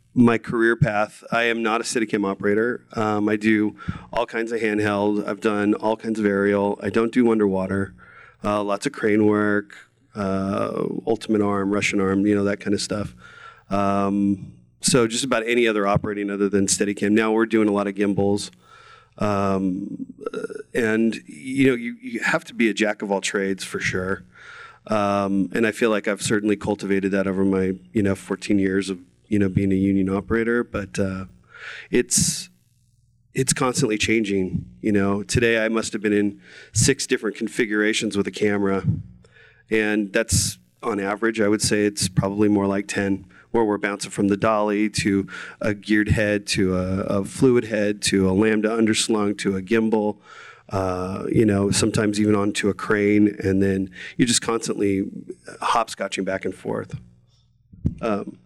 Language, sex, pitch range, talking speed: English, male, 100-110 Hz, 175 wpm